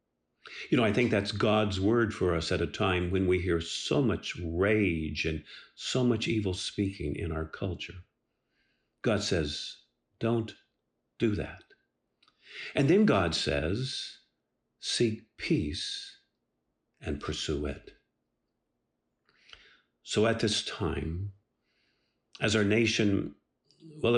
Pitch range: 90-130 Hz